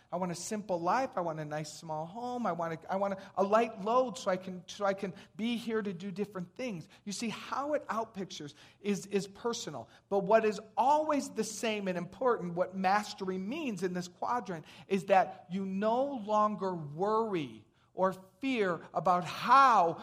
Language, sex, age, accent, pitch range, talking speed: English, male, 40-59, American, 165-215 Hz, 190 wpm